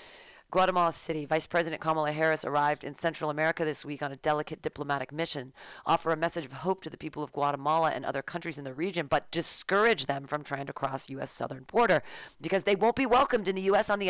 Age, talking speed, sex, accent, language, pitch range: 40-59, 225 wpm, female, American, English, 150-190 Hz